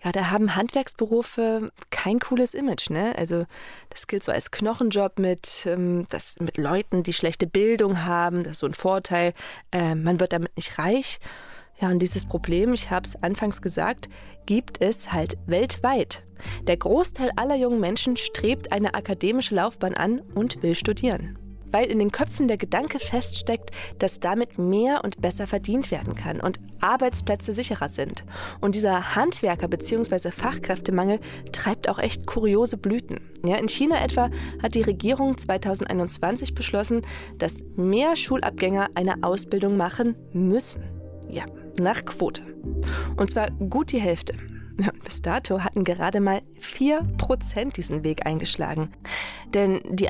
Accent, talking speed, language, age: German, 145 wpm, German, 20-39